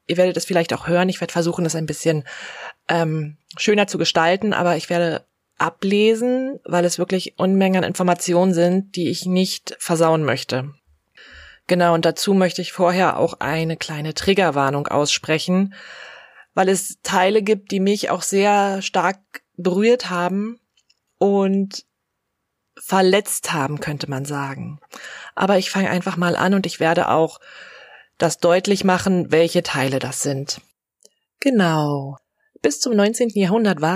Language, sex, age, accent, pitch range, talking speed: German, female, 20-39, German, 165-200 Hz, 145 wpm